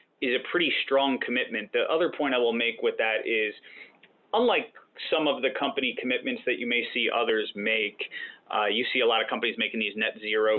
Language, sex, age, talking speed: English, male, 30-49, 210 wpm